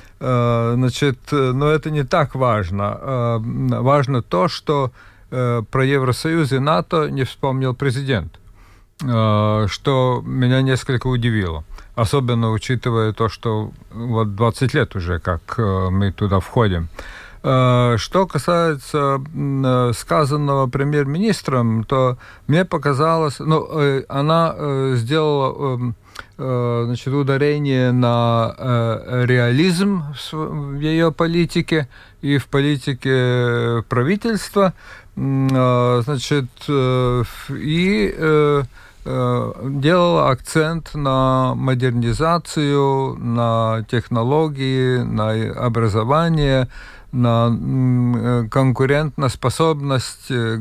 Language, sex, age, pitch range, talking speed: Russian, male, 50-69, 120-145 Hz, 75 wpm